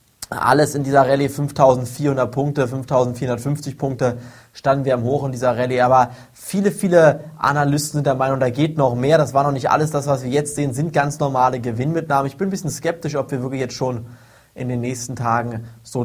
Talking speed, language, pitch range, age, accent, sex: 205 wpm, German, 125-150 Hz, 20-39, German, male